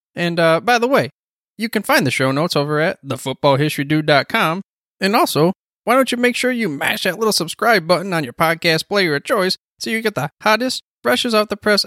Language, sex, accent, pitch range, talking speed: English, male, American, 140-205 Hz, 210 wpm